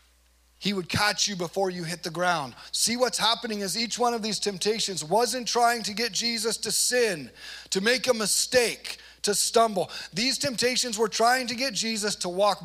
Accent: American